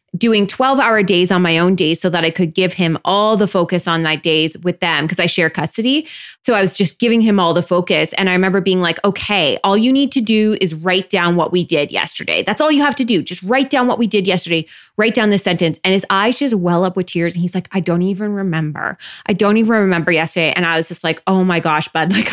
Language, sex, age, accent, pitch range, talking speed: English, female, 20-39, American, 170-220 Hz, 270 wpm